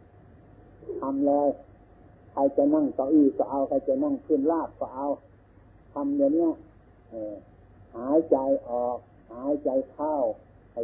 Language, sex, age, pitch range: Thai, male, 60-79, 100-140 Hz